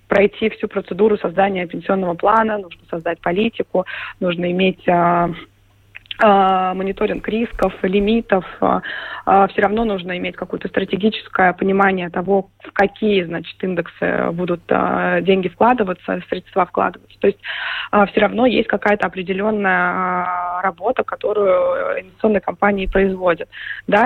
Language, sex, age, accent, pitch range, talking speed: Russian, female, 20-39, native, 185-215 Hz, 110 wpm